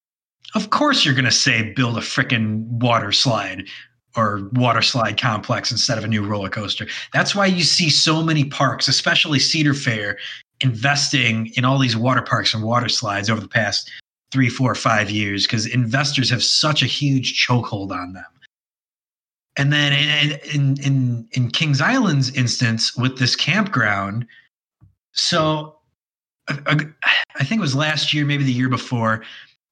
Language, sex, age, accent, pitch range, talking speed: English, male, 30-49, American, 115-145 Hz, 160 wpm